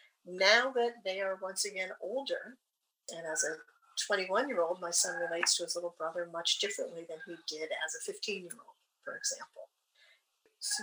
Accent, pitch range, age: American, 175-240 Hz, 50-69